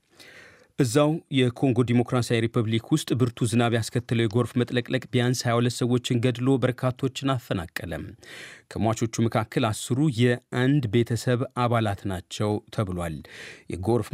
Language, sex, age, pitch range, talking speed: Amharic, male, 30-49, 105-125 Hz, 100 wpm